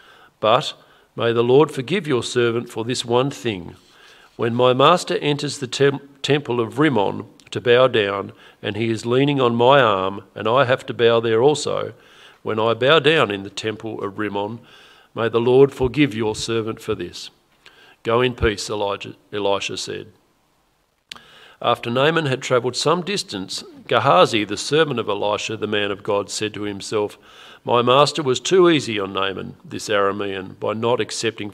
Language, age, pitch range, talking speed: English, 50-69, 105-135 Hz, 170 wpm